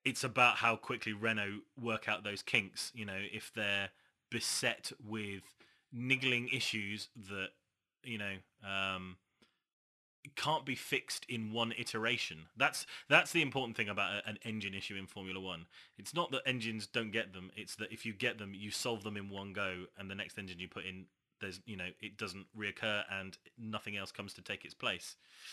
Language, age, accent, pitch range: English, 20-39, British, 100-120 Hz